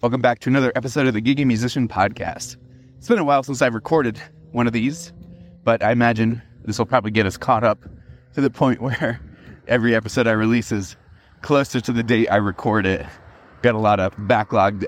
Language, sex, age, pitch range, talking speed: English, male, 30-49, 105-130 Hz, 205 wpm